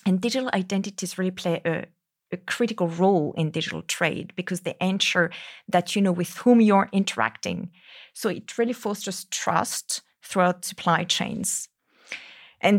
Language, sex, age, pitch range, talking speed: English, female, 30-49, 165-195 Hz, 145 wpm